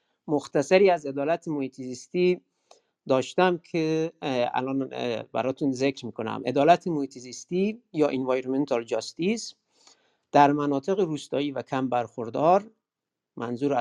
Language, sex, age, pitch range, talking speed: Persian, male, 50-69, 130-165 Hz, 95 wpm